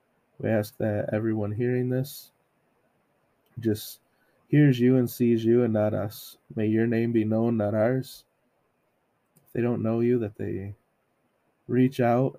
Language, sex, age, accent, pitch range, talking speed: English, male, 20-39, American, 105-120 Hz, 150 wpm